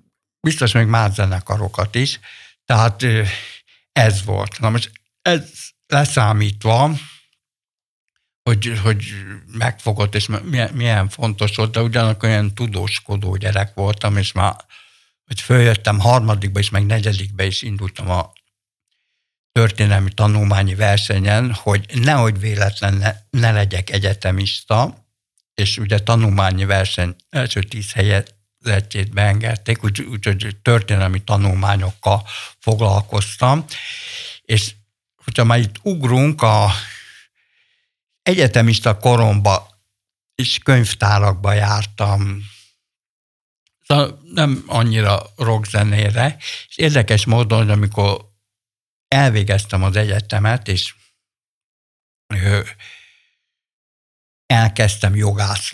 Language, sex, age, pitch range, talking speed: Hungarian, male, 60-79, 100-115 Hz, 95 wpm